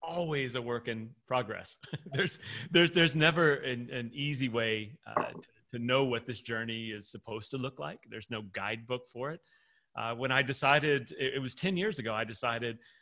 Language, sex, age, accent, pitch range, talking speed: English, male, 30-49, American, 120-150 Hz, 195 wpm